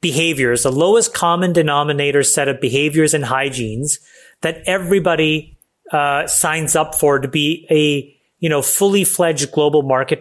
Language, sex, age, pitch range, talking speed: English, male, 30-49, 140-170 Hz, 145 wpm